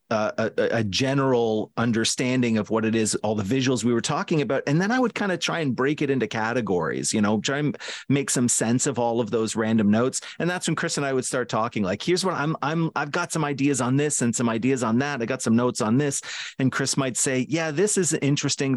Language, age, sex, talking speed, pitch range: English, 40-59, male, 255 wpm, 115-145 Hz